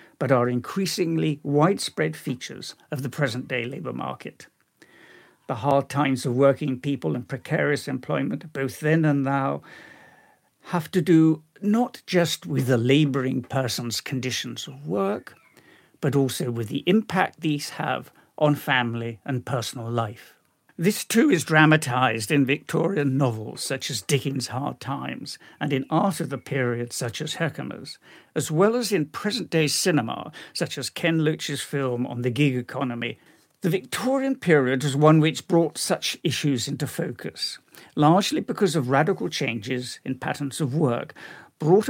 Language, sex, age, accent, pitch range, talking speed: English, male, 60-79, British, 130-165 Hz, 150 wpm